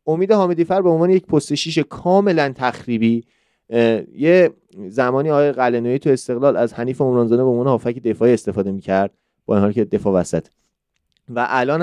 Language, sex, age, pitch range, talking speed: Persian, male, 30-49, 115-155 Hz, 165 wpm